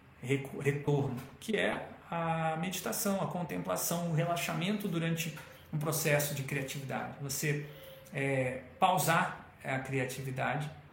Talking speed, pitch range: 105 wpm, 140-175 Hz